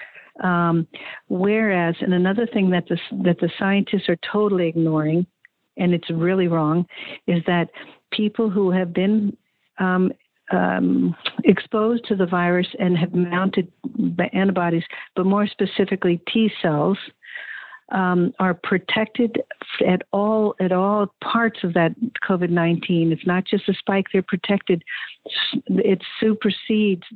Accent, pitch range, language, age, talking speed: American, 175-205 Hz, English, 60-79, 130 wpm